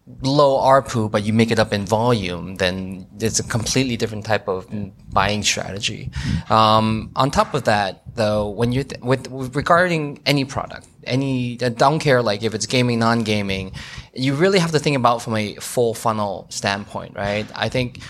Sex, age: male, 20-39